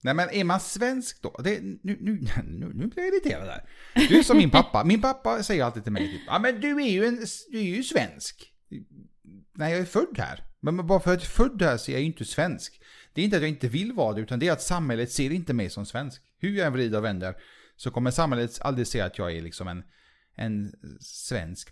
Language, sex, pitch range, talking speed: Swedish, male, 105-155 Hz, 250 wpm